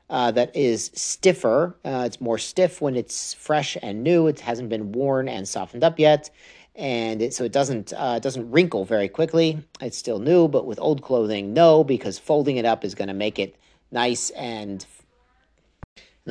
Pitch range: 110-145 Hz